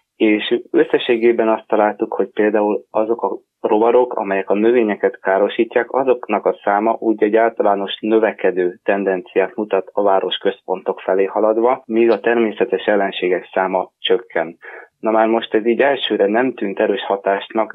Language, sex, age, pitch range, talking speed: Hungarian, male, 20-39, 95-115 Hz, 145 wpm